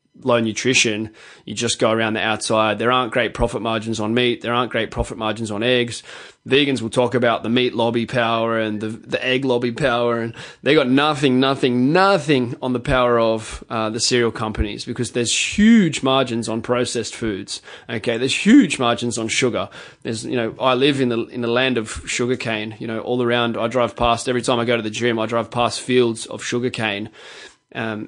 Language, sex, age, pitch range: English, male, 20-39, 110-130 Hz